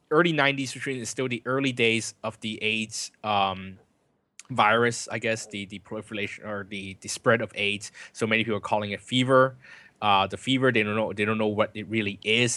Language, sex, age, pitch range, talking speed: English, male, 20-39, 100-120 Hz, 210 wpm